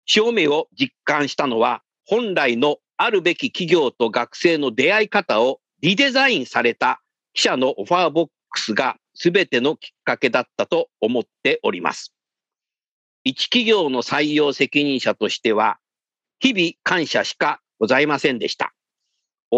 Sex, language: male, Japanese